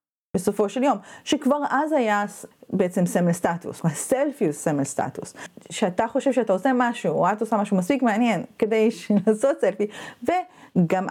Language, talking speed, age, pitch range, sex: Hebrew, 150 wpm, 30-49, 185-275 Hz, female